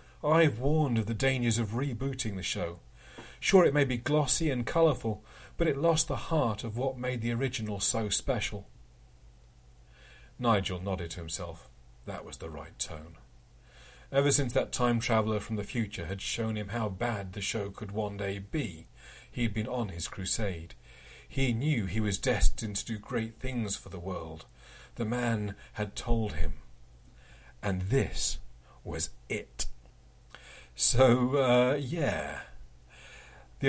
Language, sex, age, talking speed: English, male, 40-59, 150 wpm